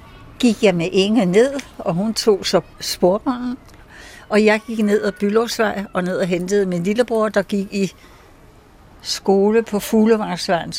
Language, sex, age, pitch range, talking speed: Danish, female, 60-79, 170-220 Hz, 160 wpm